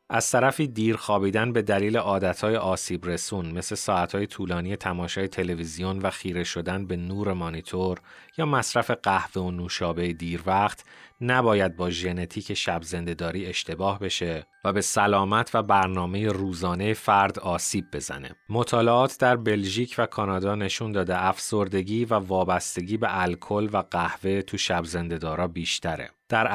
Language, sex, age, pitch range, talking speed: Persian, male, 30-49, 90-110 Hz, 135 wpm